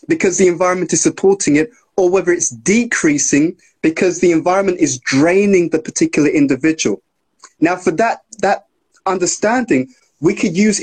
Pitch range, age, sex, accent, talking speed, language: 165-210 Hz, 20-39, male, British, 145 wpm, English